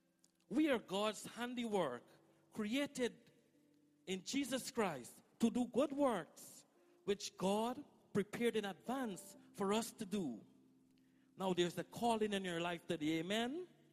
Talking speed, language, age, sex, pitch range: 130 wpm, English, 50-69, male, 180-230 Hz